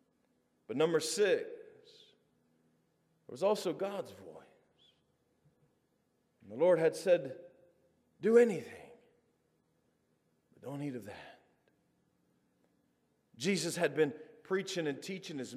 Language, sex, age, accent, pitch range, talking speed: English, male, 40-59, American, 170-230 Hz, 105 wpm